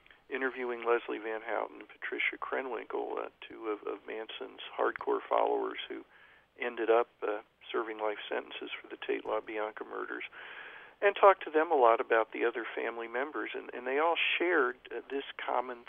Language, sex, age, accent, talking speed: English, male, 50-69, American, 165 wpm